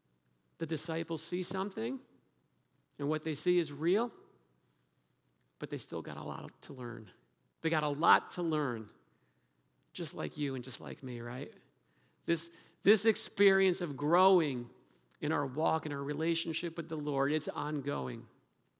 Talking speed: 155 wpm